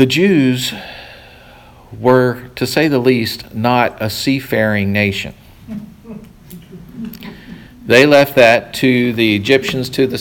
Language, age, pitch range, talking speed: English, 50-69, 100-125 Hz, 110 wpm